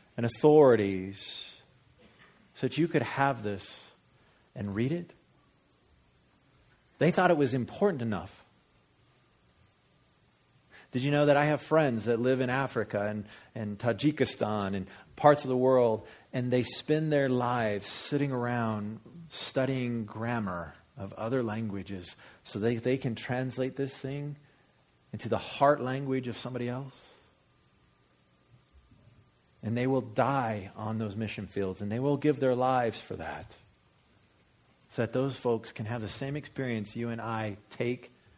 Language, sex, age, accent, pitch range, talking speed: English, male, 40-59, American, 100-130 Hz, 140 wpm